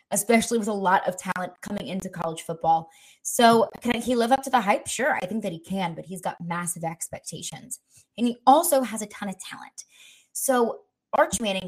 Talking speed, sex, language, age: 205 wpm, female, English, 20-39